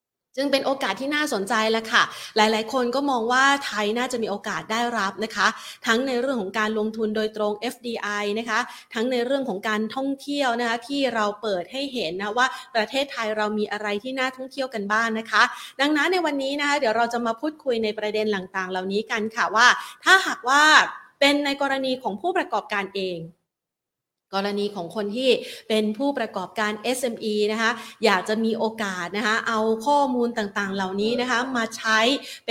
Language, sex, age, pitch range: Thai, female, 20-39, 205-250 Hz